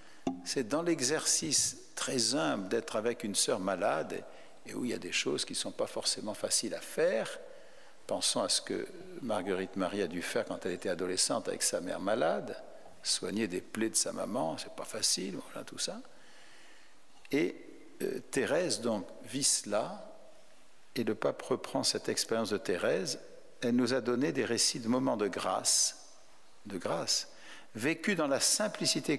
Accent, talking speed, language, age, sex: French, 175 wpm, French, 60-79, male